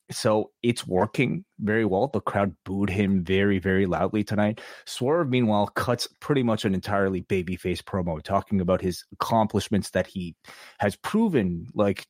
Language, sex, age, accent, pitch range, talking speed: English, male, 30-49, American, 95-125 Hz, 155 wpm